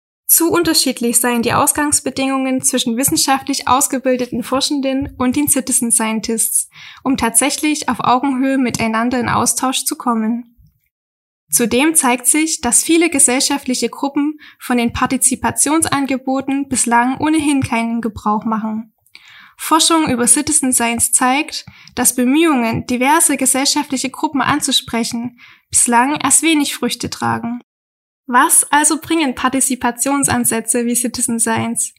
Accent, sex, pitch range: German, female, 240-290 Hz